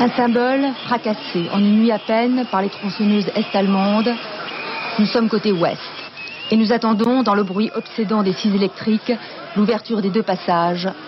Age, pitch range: 40-59, 160-205 Hz